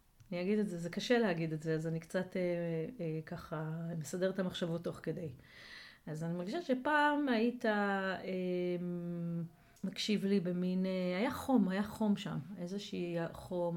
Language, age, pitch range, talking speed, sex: Hebrew, 30-49, 170-205 Hz, 160 wpm, female